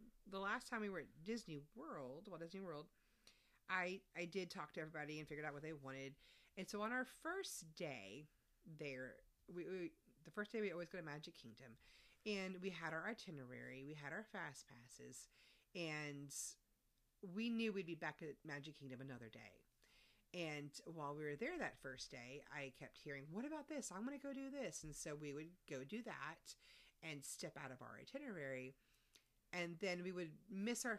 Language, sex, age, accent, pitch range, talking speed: English, female, 40-59, American, 150-210 Hz, 200 wpm